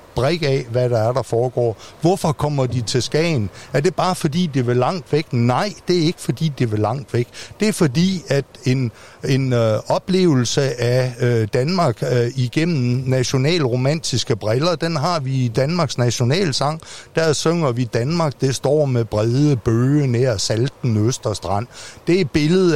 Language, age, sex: Danish, 60-79, male